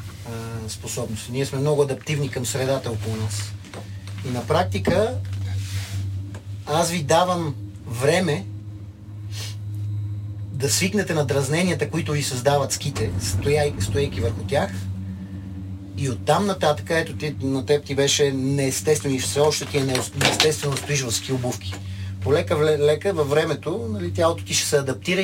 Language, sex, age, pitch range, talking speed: Bulgarian, male, 30-49, 100-145 Hz, 130 wpm